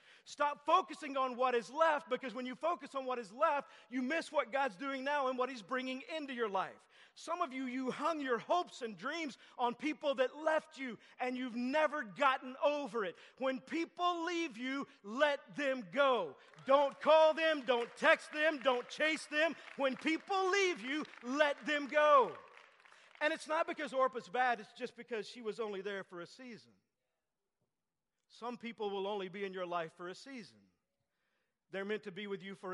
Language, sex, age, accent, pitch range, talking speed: English, male, 50-69, American, 200-275 Hz, 190 wpm